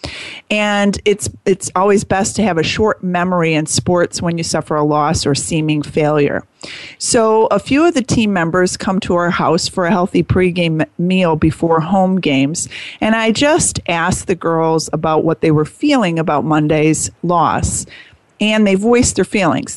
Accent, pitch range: American, 155-195 Hz